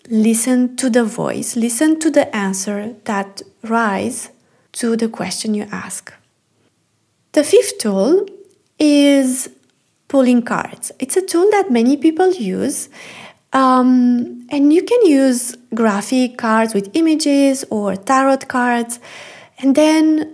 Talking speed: 125 wpm